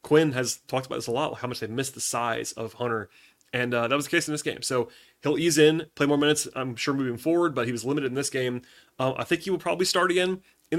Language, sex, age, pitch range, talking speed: English, male, 30-49, 120-150 Hz, 285 wpm